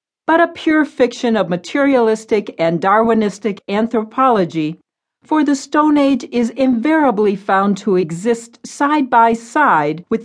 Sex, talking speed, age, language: female, 130 wpm, 60-79, English